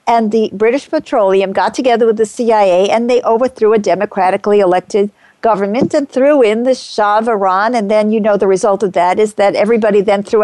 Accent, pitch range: American, 205-250 Hz